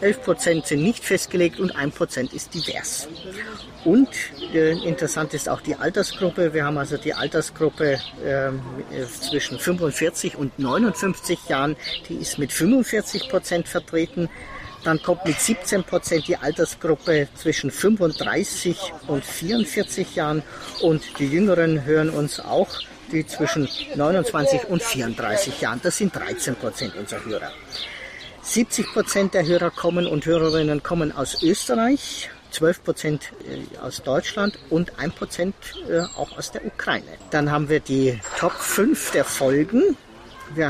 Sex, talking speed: male, 125 wpm